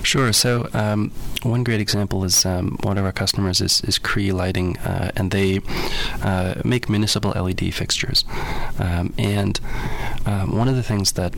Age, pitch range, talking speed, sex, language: 20-39, 90-105 Hz, 170 wpm, male, English